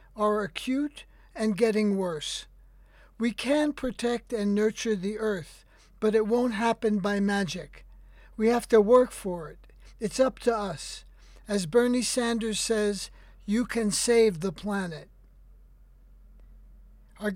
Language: English